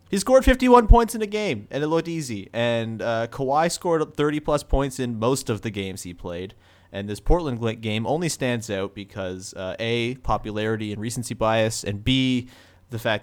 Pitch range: 100-135 Hz